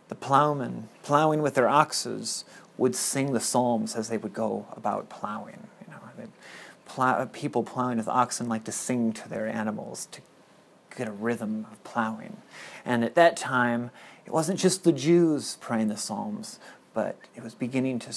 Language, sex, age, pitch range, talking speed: English, male, 30-49, 115-150 Hz, 180 wpm